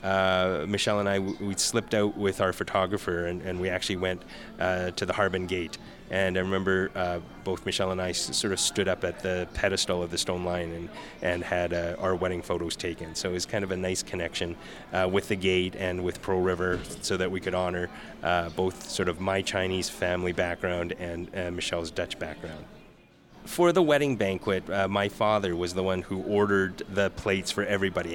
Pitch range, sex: 90-110 Hz, male